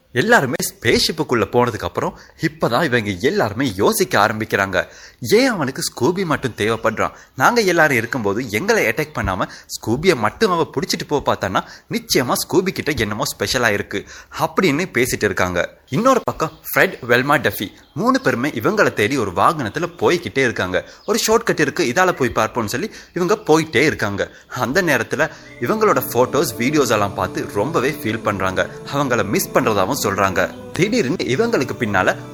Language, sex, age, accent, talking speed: Tamil, male, 30-49, native, 135 wpm